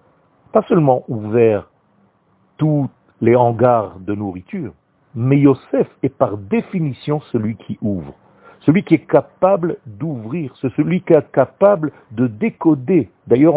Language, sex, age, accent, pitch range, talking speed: French, male, 50-69, French, 105-150 Hz, 125 wpm